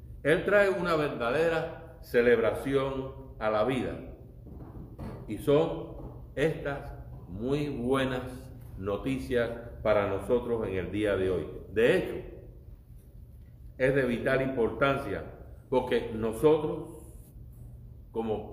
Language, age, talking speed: Spanish, 50-69, 95 wpm